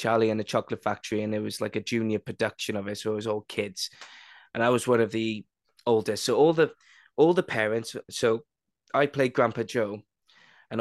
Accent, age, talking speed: British, 20-39, 210 wpm